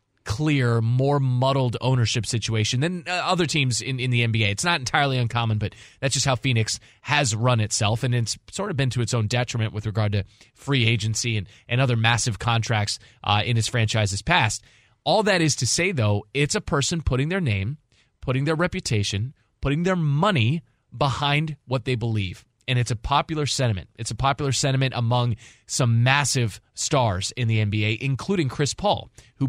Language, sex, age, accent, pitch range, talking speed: English, male, 20-39, American, 115-145 Hz, 185 wpm